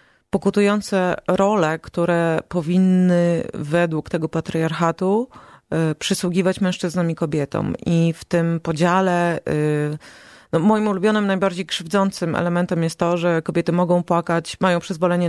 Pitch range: 165-190 Hz